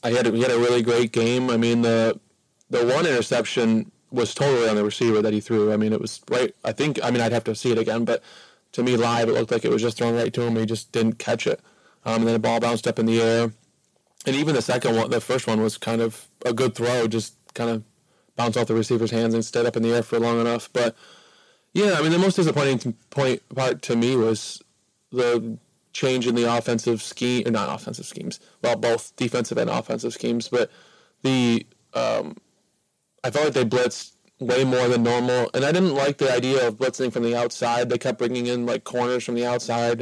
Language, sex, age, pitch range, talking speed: English, male, 20-39, 115-125 Hz, 235 wpm